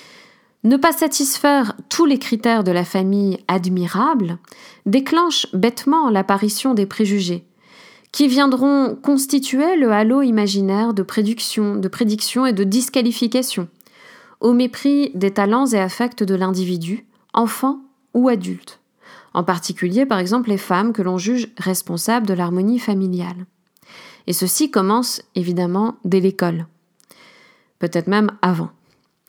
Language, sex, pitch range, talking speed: French, female, 190-260 Hz, 125 wpm